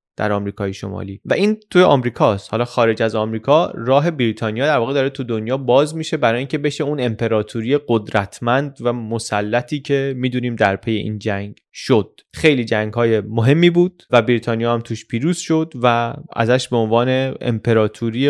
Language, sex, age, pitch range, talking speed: Persian, male, 20-39, 110-145 Hz, 165 wpm